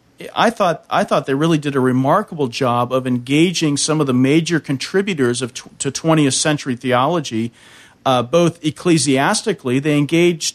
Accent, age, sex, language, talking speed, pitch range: American, 40-59, male, English, 160 wpm, 125-150 Hz